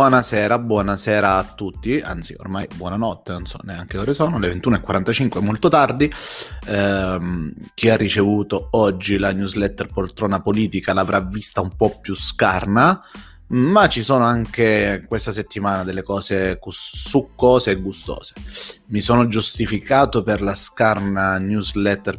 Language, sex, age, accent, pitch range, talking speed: Italian, male, 30-49, native, 95-110 Hz, 135 wpm